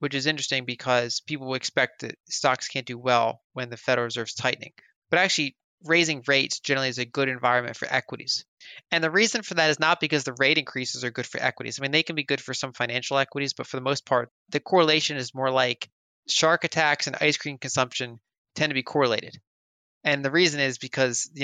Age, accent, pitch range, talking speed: 20-39, American, 120-145 Hz, 220 wpm